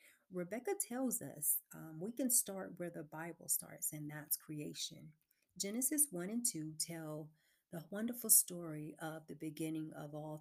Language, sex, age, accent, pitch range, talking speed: English, female, 40-59, American, 155-185 Hz, 155 wpm